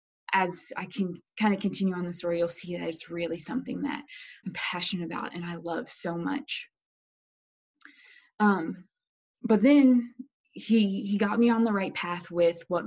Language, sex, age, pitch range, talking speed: English, female, 20-39, 175-230 Hz, 175 wpm